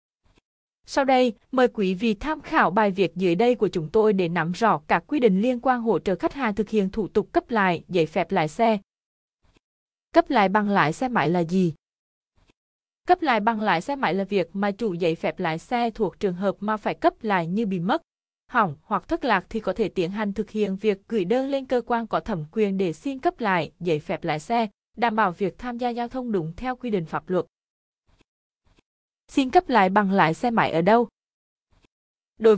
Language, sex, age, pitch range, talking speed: Vietnamese, female, 20-39, 185-235 Hz, 220 wpm